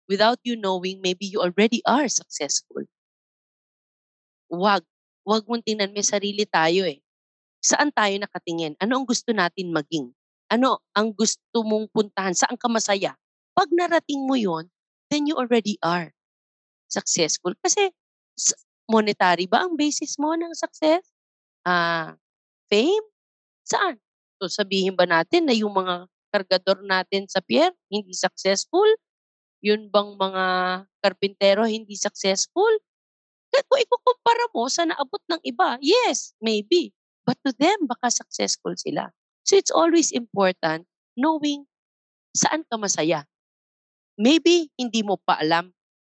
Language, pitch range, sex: English, 185-295 Hz, female